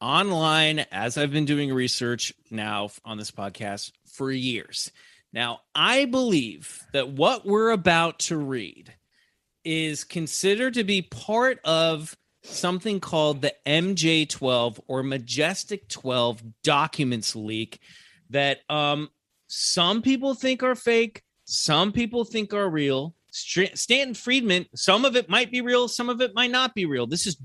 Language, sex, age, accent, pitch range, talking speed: English, male, 30-49, American, 120-175 Hz, 140 wpm